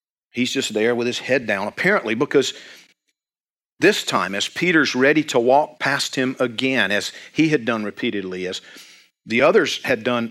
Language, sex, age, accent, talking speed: English, male, 50-69, American, 170 wpm